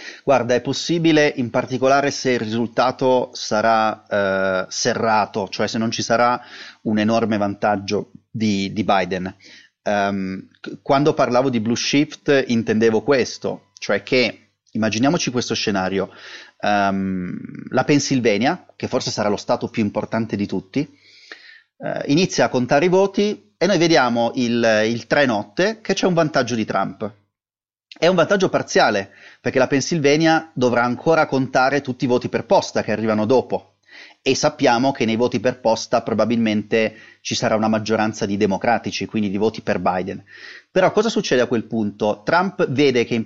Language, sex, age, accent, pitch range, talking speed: Italian, male, 30-49, native, 110-145 Hz, 155 wpm